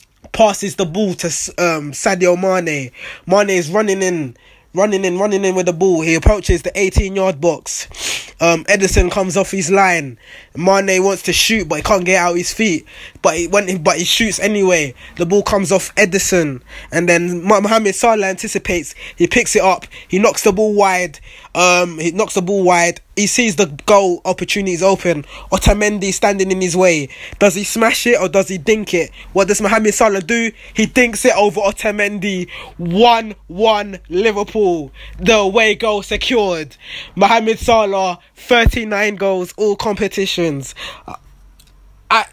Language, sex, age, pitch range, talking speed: English, male, 20-39, 175-210 Hz, 165 wpm